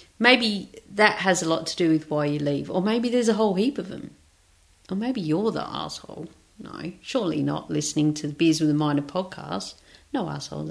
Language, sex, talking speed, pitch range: English, female, 205 wpm, 150-215 Hz